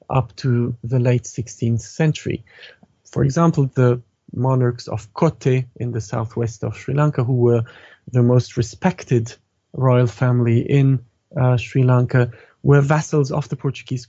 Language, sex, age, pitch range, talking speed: English, male, 30-49, 120-135 Hz, 145 wpm